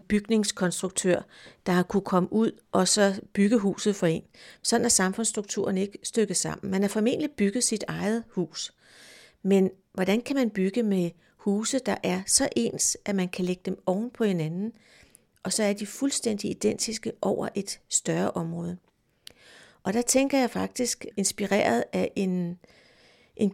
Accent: native